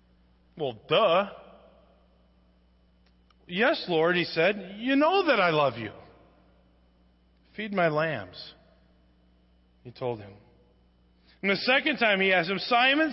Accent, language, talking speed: American, English, 120 wpm